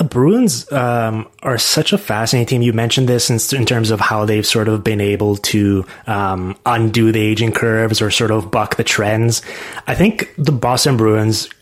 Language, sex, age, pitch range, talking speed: English, male, 20-39, 105-115 Hz, 195 wpm